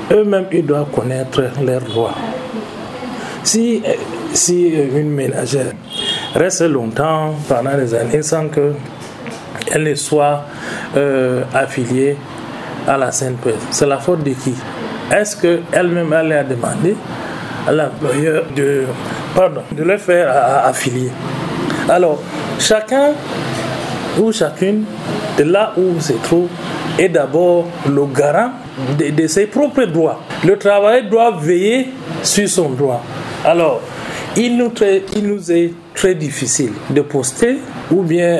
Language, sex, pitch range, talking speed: French, male, 140-175 Hz, 125 wpm